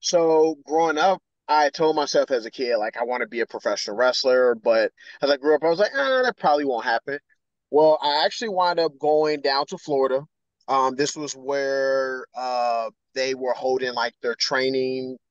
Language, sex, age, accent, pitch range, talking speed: English, male, 20-39, American, 130-175 Hz, 195 wpm